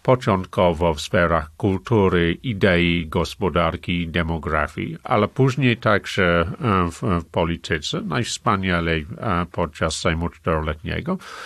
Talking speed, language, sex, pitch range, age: 90 wpm, Polish, male, 85-120 Hz, 50-69